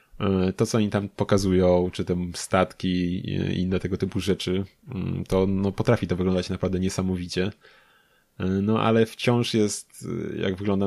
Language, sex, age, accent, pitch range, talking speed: Polish, male, 20-39, native, 90-110 Hz, 145 wpm